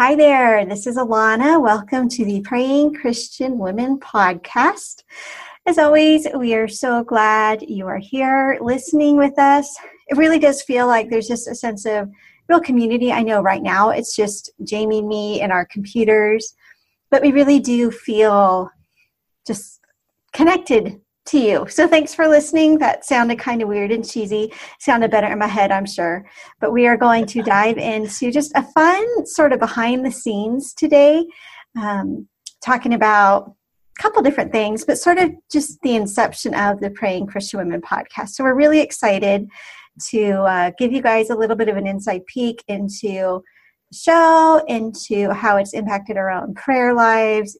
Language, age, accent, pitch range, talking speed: English, 40-59, American, 210-280 Hz, 170 wpm